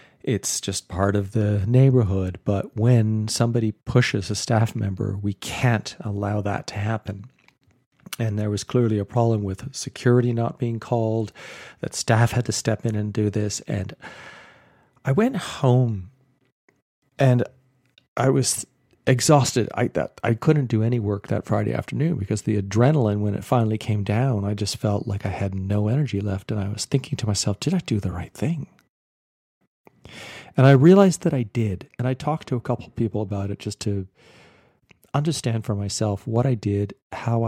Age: 40-59